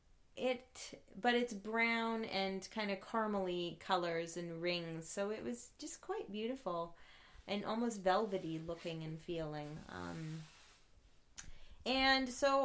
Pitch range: 175-240 Hz